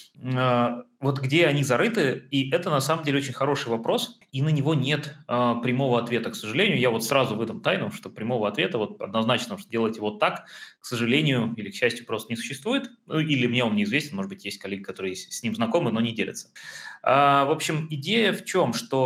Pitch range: 120-160 Hz